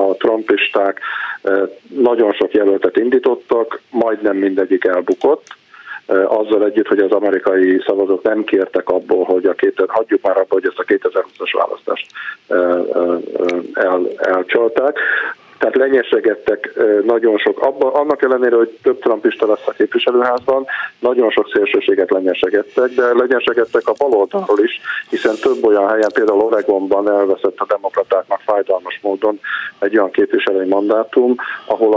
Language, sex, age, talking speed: Hungarian, male, 50-69, 130 wpm